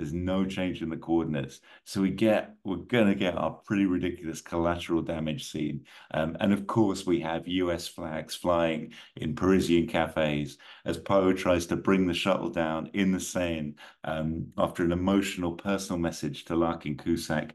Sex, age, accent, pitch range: male, 50-69, British, 80-100 Hz